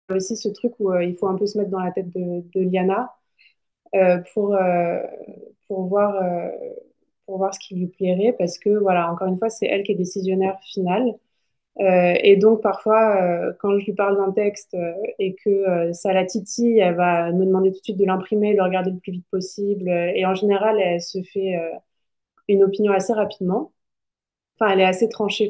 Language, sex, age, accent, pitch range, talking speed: French, female, 20-39, French, 185-210 Hz, 210 wpm